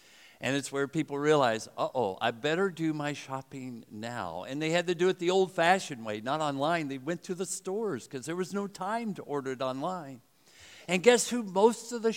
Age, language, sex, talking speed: 60-79, English, male, 215 wpm